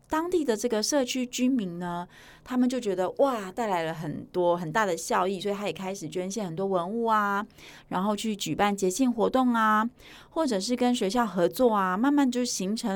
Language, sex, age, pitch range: Chinese, female, 30-49, 180-245 Hz